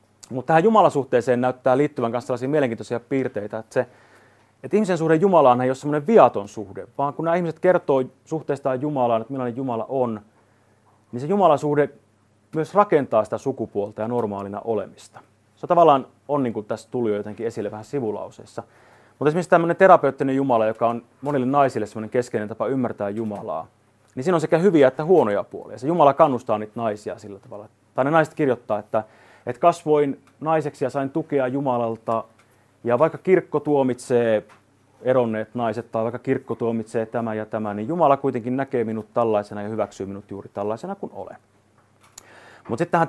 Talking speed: 165 wpm